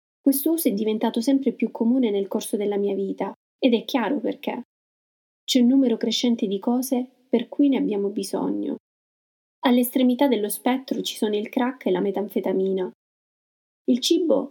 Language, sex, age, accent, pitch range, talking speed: Italian, female, 30-49, native, 205-255 Hz, 160 wpm